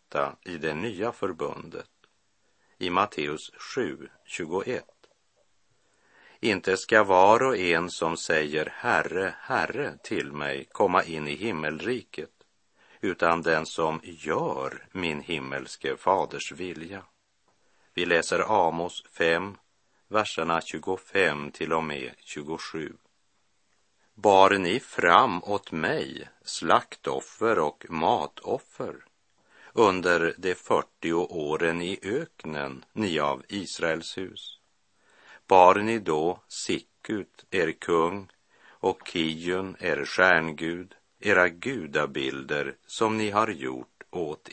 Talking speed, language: 100 wpm, Swedish